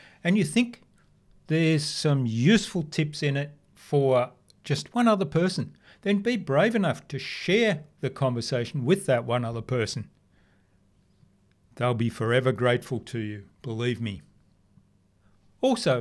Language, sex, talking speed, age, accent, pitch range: English, male, 135 wpm, 40-59, Australian, 120-160 Hz